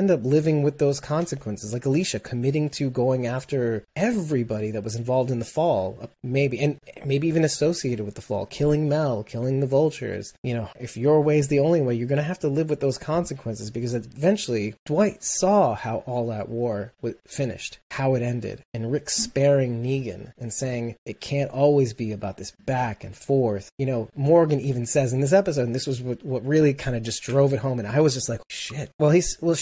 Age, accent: 30-49, American